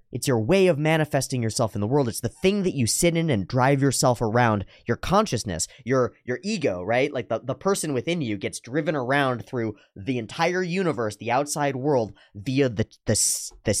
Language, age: English, 20-39